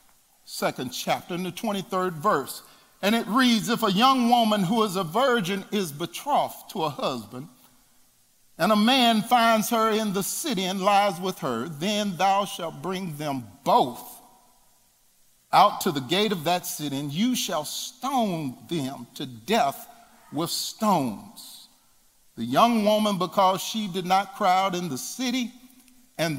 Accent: American